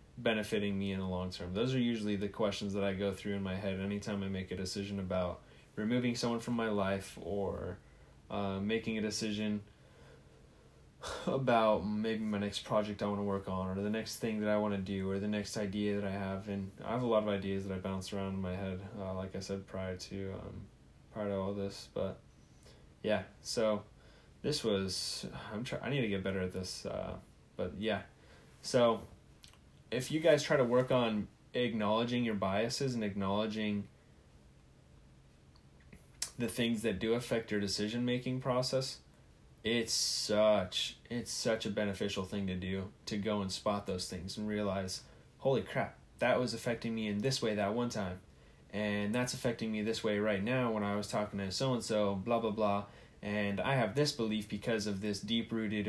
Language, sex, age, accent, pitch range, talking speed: English, male, 10-29, American, 95-115 Hz, 190 wpm